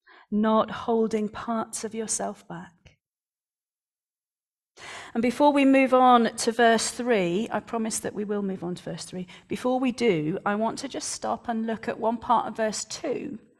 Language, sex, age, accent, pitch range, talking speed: English, female, 40-59, British, 210-275 Hz, 175 wpm